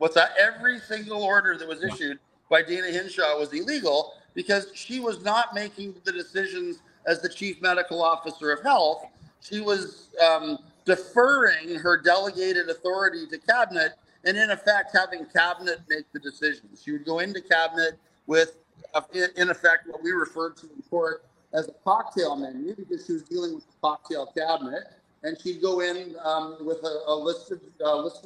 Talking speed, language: 175 wpm, English